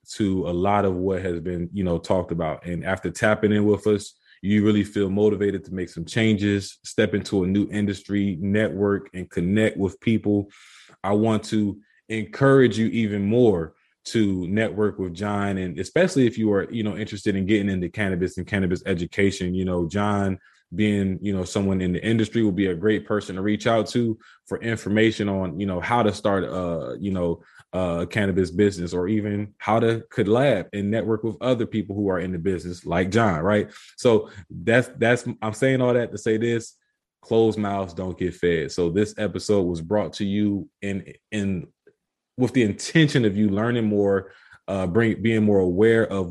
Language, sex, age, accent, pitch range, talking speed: English, male, 20-39, American, 95-110 Hz, 195 wpm